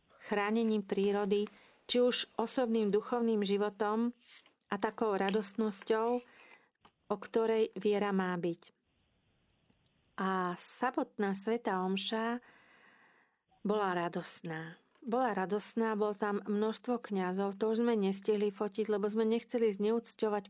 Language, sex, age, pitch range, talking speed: Slovak, female, 40-59, 200-225 Hz, 105 wpm